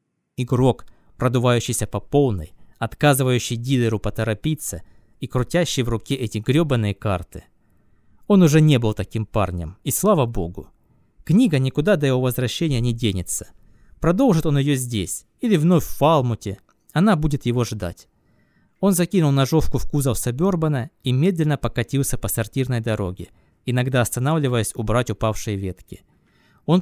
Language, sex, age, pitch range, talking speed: Russian, male, 20-39, 110-150 Hz, 135 wpm